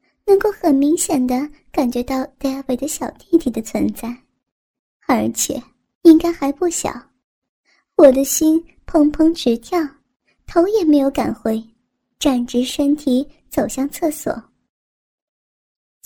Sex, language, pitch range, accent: male, Chinese, 260-325 Hz, native